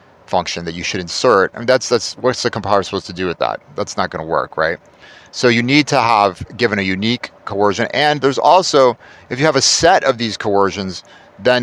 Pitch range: 95-120 Hz